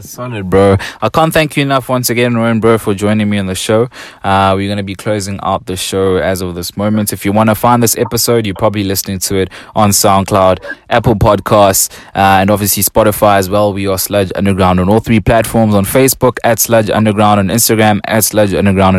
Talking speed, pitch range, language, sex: 220 wpm, 100-125 Hz, English, male